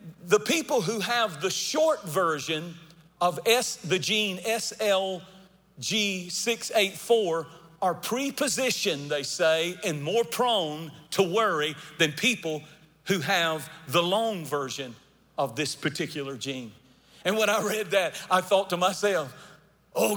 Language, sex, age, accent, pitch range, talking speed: English, male, 40-59, American, 170-225 Hz, 120 wpm